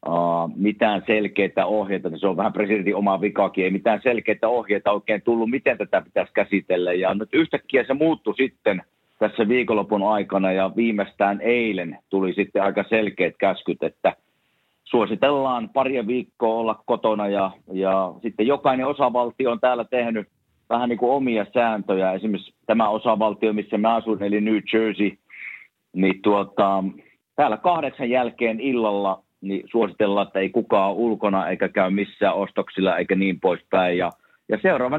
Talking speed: 145 wpm